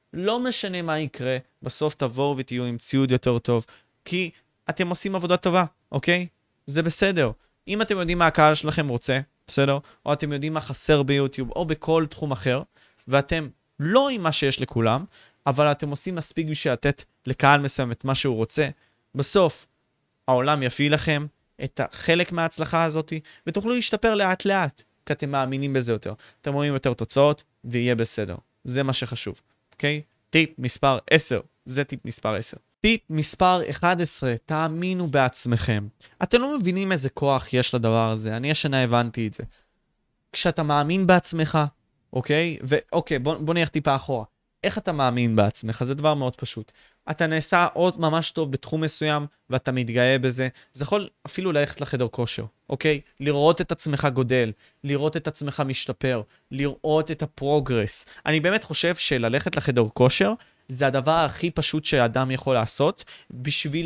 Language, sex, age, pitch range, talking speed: Hebrew, male, 20-39, 125-160 Hz, 155 wpm